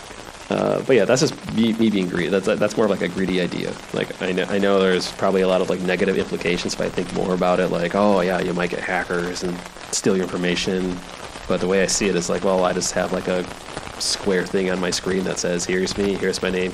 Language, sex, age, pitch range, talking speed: English, male, 20-39, 90-95 Hz, 260 wpm